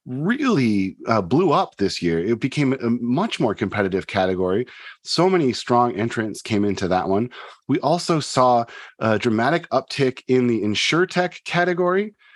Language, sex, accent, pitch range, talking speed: English, male, American, 110-165 Hz, 150 wpm